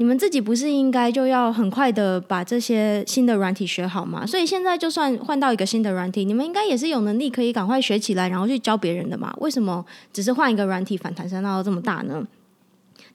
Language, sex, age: Chinese, female, 20-39